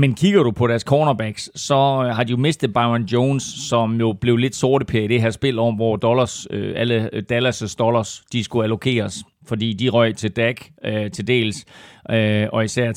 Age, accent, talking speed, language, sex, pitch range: 40-59, native, 200 wpm, Danish, male, 110-130 Hz